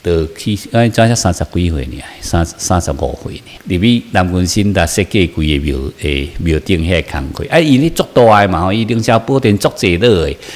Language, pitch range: Chinese, 85-110 Hz